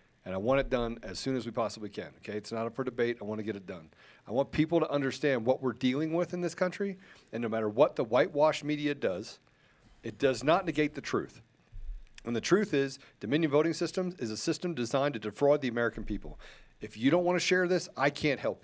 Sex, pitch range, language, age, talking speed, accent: male, 130-180 Hz, English, 40-59, 240 wpm, American